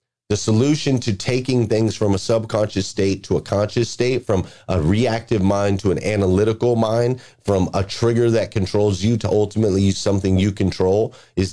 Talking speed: 175 wpm